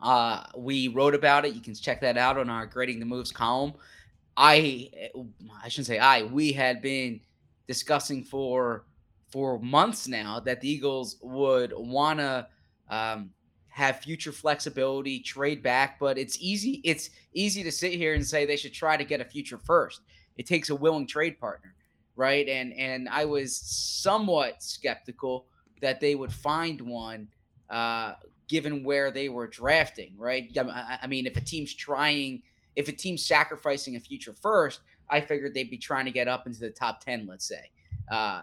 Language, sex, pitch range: English, male, 120-145 Hz